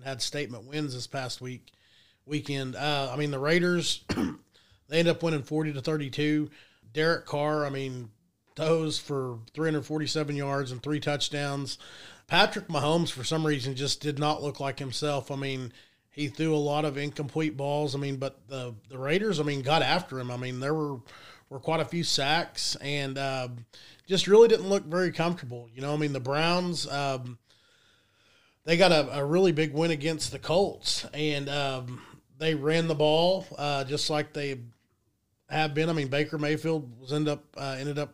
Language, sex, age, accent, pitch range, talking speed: English, male, 30-49, American, 130-155 Hz, 185 wpm